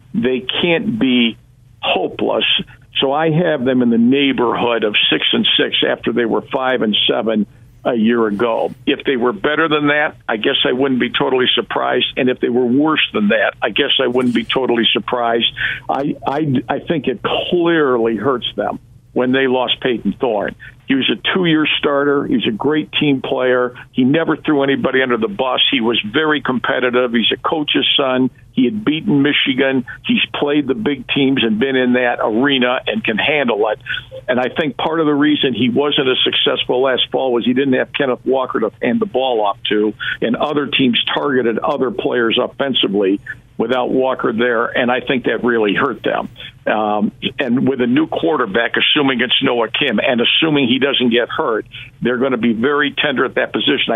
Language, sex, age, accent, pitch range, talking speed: English, male, 50-69, American, 120-140 Hz, 195 wpm